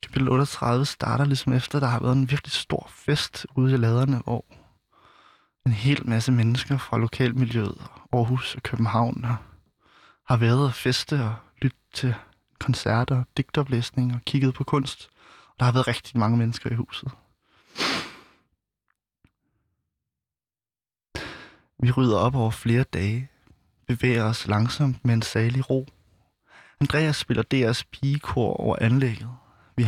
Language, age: Danish, 20-39